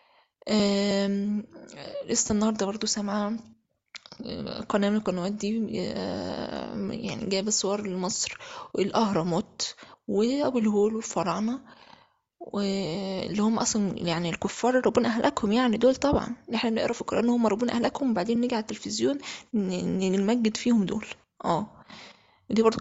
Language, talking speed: Arabic, 120 wpm